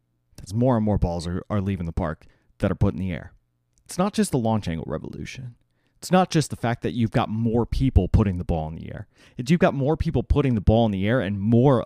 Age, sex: 30-49, male